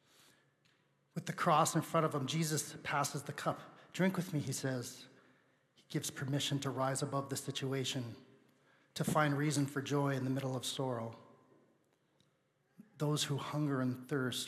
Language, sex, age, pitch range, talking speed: English, male, 40-59, 130-150 Hz, 160 wpm